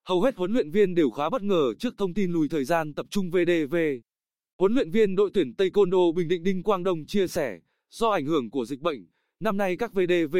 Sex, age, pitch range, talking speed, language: male, 20-39, 165-210 Hz, 240 wpm, Vietnamese